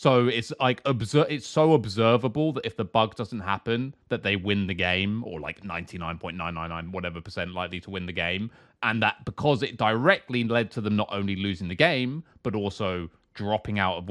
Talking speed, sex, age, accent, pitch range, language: 190 wpm, male, 30-49, British, 95-120 Hz, English